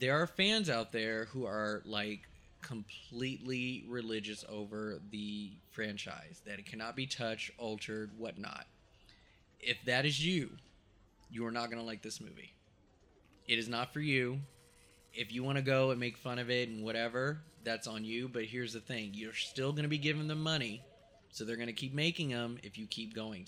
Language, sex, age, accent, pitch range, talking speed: English, male, 20-39, American, 110-130 Hz, 190 wpm